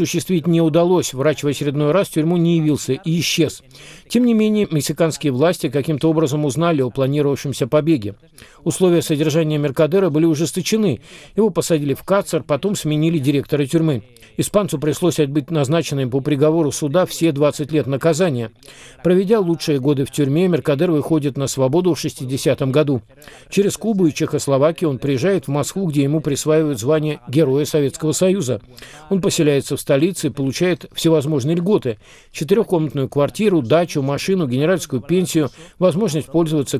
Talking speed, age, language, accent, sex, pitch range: 150 wpm, 50-69, Russian, native, male, 140-170 Hz